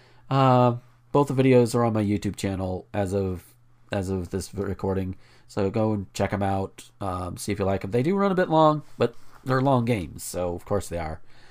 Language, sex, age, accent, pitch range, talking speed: English, male, 40-59, American, 95-125 Hz, 220 wpm